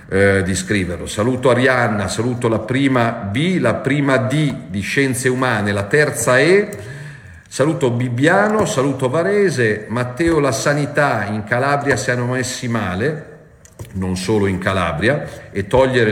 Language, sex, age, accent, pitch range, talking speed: Italian, male, 40-59, native, 110-135 Hz, 140 wpm